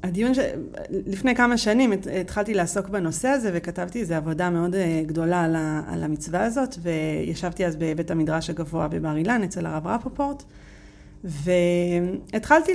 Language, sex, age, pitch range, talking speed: Hebrew, female, 30-49, 170-235 Hz, 130 wpm